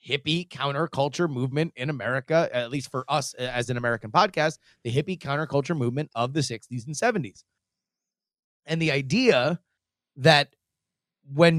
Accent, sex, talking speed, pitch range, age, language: American, male, 140 wpm, 125-170 Hz, 30-49, English